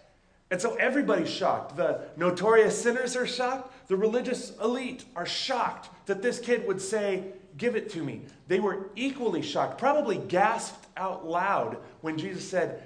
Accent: American